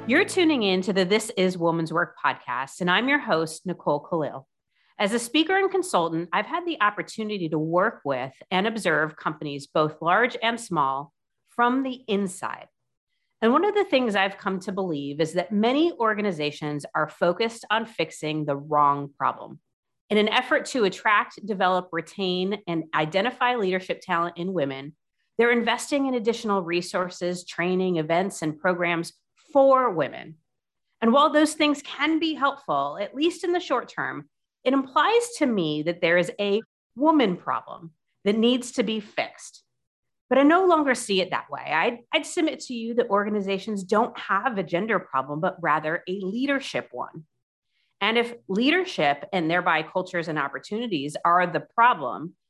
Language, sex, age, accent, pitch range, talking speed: English, female, 40-59, American, 170-245 Hz, 165 wpm